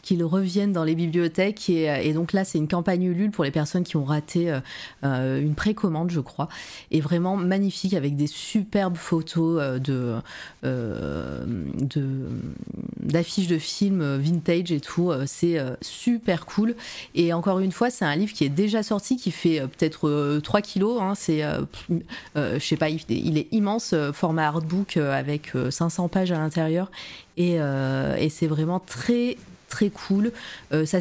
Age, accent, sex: 30-49, French, female